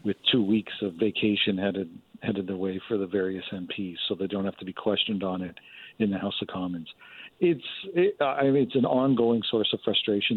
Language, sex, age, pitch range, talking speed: English, male, 50-69, 100-140 Hz, 215 wpm